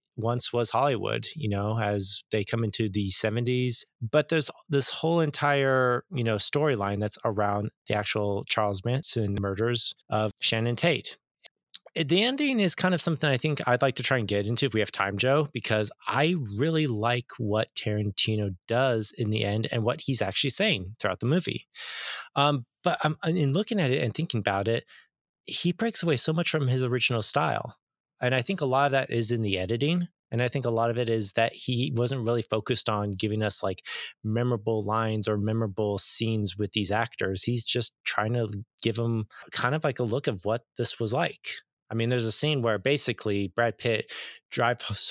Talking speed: 195 wpm